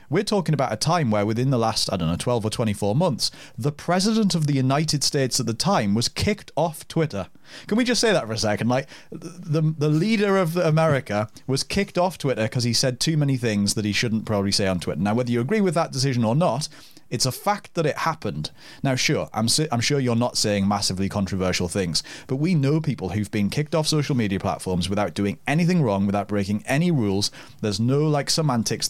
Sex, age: male, 30-49